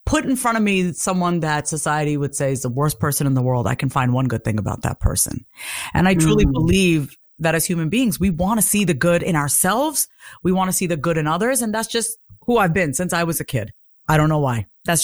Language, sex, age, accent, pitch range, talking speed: English, female, 30-49, American, 155-220 Hz, 265 wpm